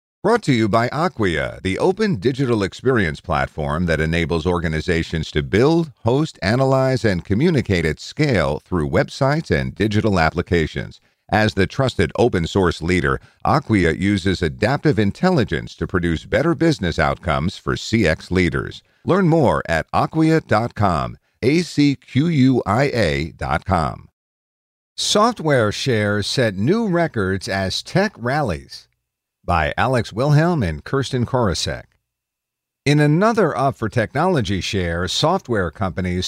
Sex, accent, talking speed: male, American, 120 wpm